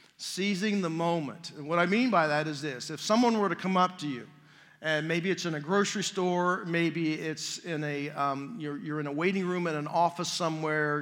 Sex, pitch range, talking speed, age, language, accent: male, 155-190 Hz, 225 wpm, 40-59, English, American